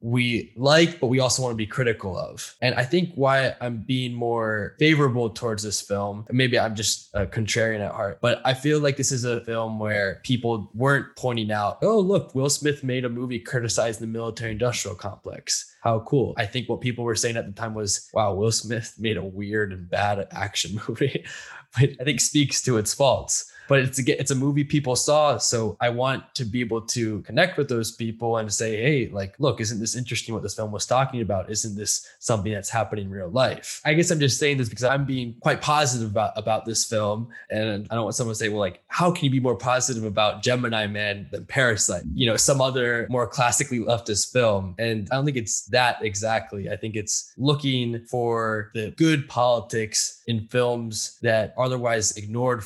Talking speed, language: 210 wpm, English